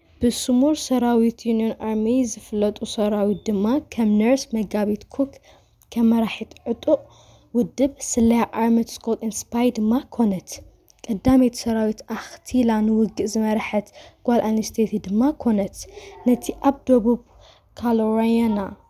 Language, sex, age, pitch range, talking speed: Amharic, female, 20-39, 210-245 Hz, 105 wpm